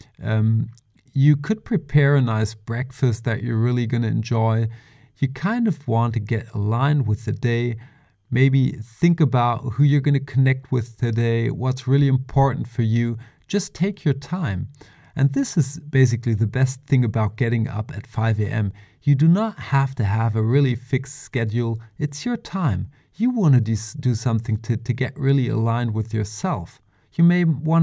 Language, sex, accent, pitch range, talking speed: English, male, German, 115-145 Hz, 180 wpm